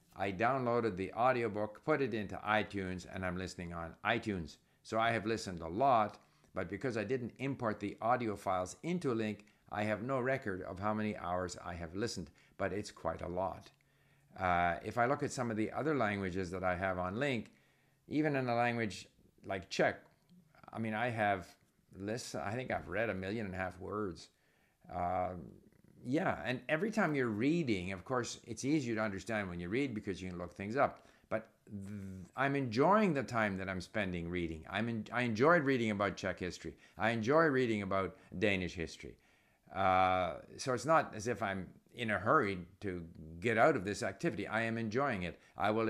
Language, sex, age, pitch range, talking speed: English, male, 50-69, 95-120 Hz, 195 wpm